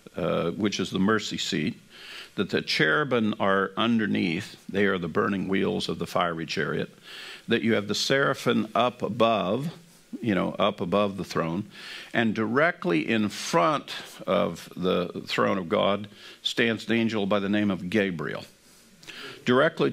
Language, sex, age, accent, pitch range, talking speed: English, male, 50-69, American, 100-125 Hz, 155 wpm